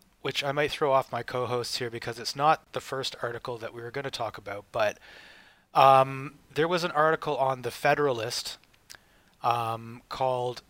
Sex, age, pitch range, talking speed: male, 30-49, 120-150 Hz, 180 wpm